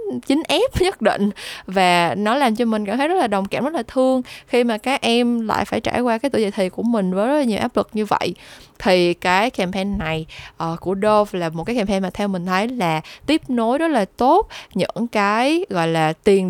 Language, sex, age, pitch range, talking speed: Vietnamese, female, 10-29, 180-235 Hz, 240 wpm